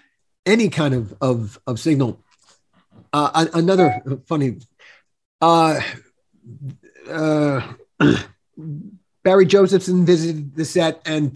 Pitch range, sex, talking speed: 140-180 Hz, male, 90 wpm